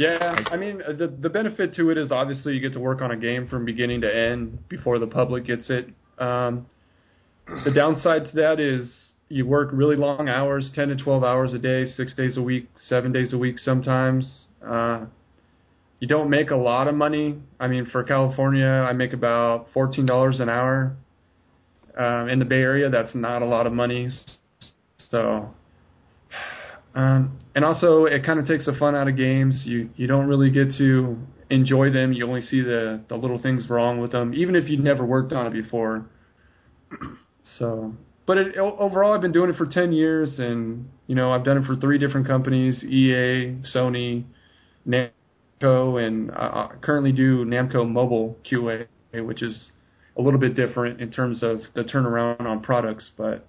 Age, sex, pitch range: 20-39, male, 120-140 Hz